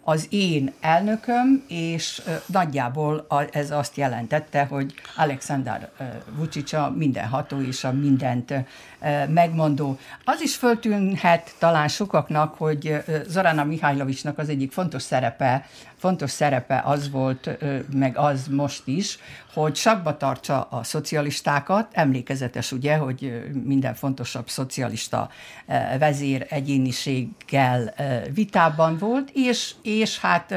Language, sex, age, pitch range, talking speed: Hungarian, female, 60-79, 135-175 Hz, 105 wpm